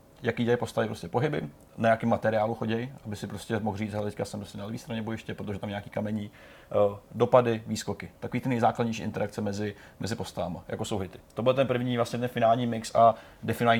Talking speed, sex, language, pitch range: 210 wpm, male, Czech, 105-125 Hz